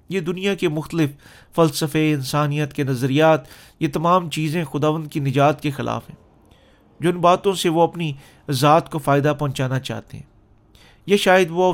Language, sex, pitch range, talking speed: Urdu, male, 130-170 Hz, 160 wpm